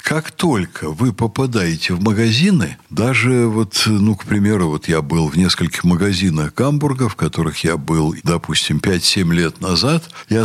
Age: 60-79